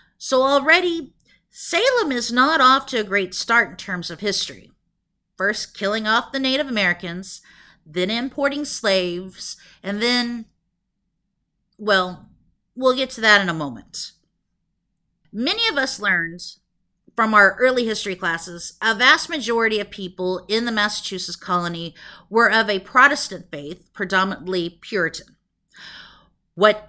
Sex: female